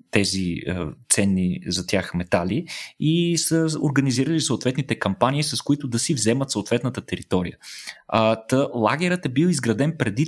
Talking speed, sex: 130 wpm, male